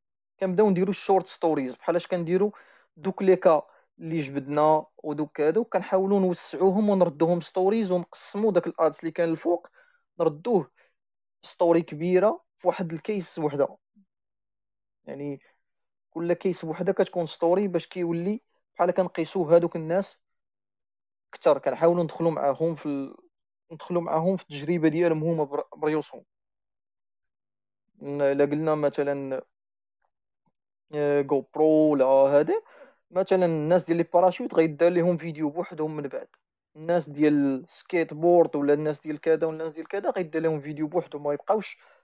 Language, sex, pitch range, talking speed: Arabic, male, 145-180 Hz, 125 wpm